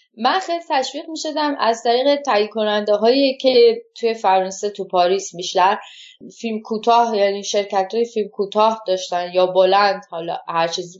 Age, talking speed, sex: 10-29, 155 wpm, female